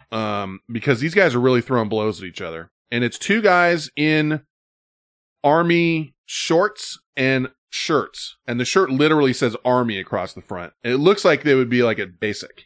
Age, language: 20-39, English